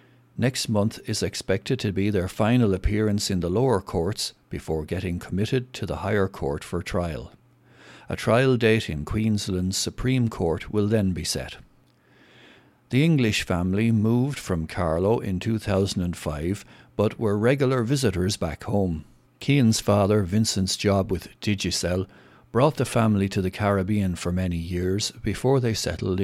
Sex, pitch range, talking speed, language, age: male, 90-115 Hz, 150 wpm, English, 60-79